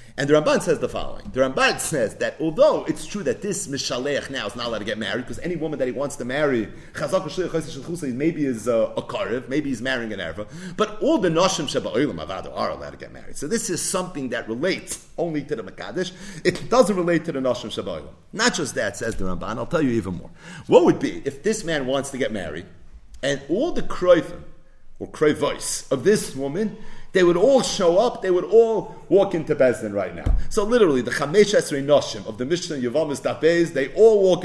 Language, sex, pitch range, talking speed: English, male, 125-190 Hz, 220 wpm